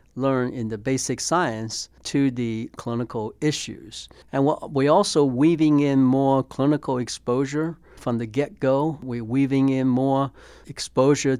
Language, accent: English, American